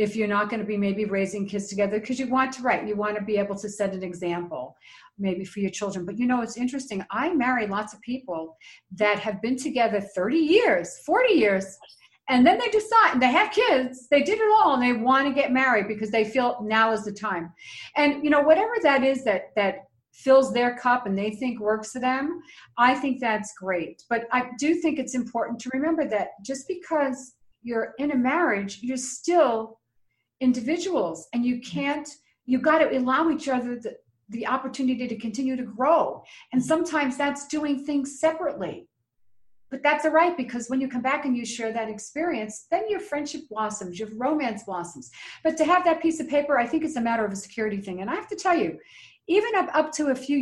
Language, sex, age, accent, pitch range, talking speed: English, female, 50-69, American, 215-295 Hz, 215 wpm